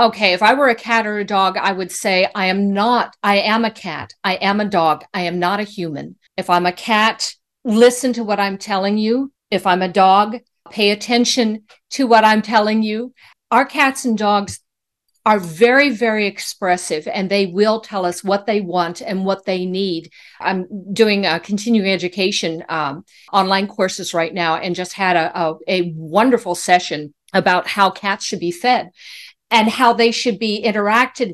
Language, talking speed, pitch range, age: English, 190 wpm, 190-240 Hz, 50-69